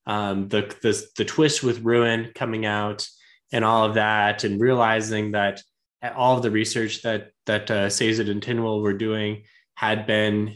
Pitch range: 105-125 Hz